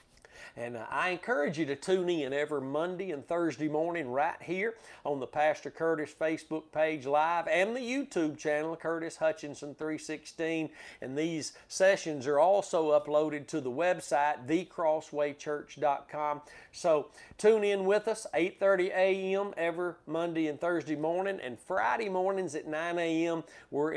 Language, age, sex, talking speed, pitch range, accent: English, 50-69, male, 145 wpm, 145-175 Hz, American